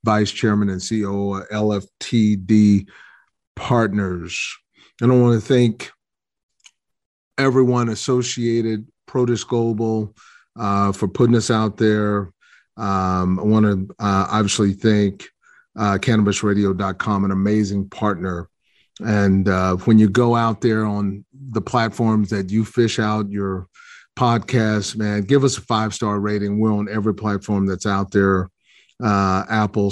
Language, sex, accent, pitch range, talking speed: English, male, American, 95-110 Hz, 130 wpm